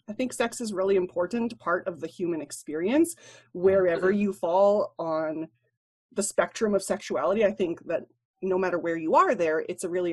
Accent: American